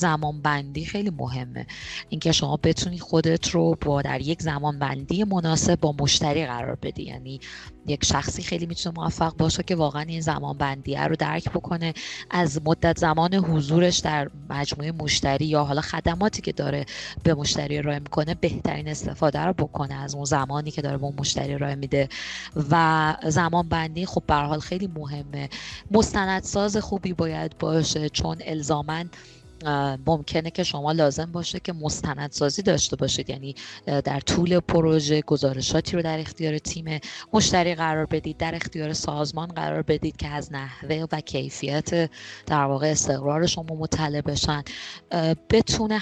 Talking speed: 155 wpm